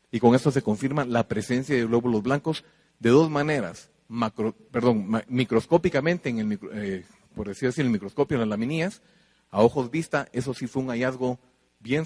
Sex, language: male, Spanish